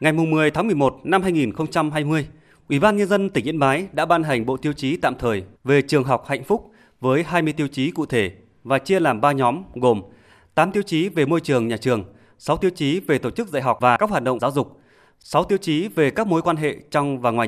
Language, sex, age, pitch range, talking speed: Vietnamese, male, 20-39, 125-160 Hz, 245 wpm